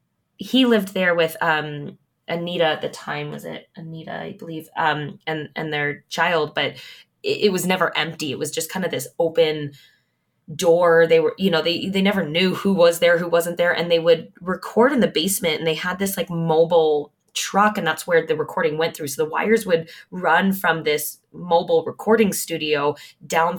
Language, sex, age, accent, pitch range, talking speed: English, female, 20-39, American, 160-195 Hz, 200 wpm